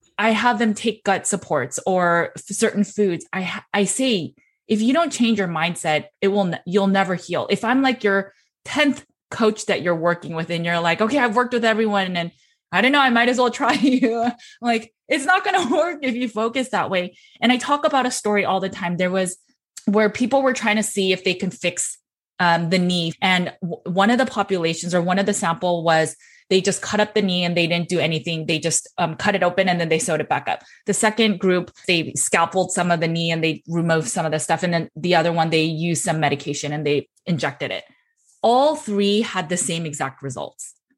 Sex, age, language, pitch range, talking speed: female, 20-39, English, 170-220 Hz, 235 wpm